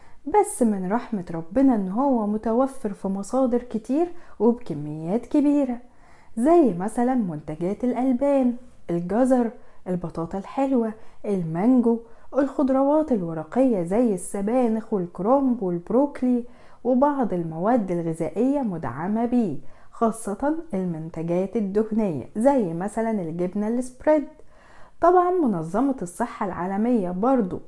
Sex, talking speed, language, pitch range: female, 95 wpm, Arabic, 195-265 Hz